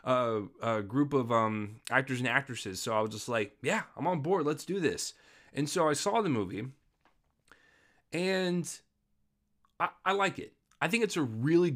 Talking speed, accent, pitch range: 185 wpm, American, 105-130 Hz